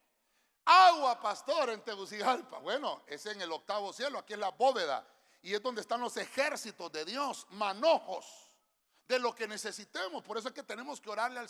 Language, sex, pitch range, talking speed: Spanish, male, 190-260 Hz, 185 wpm